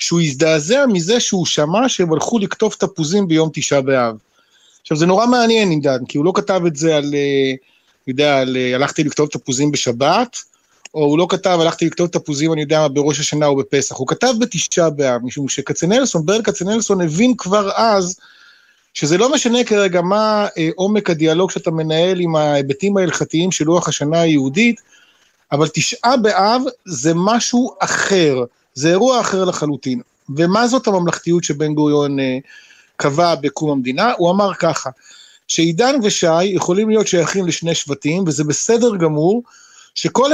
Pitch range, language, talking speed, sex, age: 150-210 Hz, Hebrew, 155 wpm, male, 30-49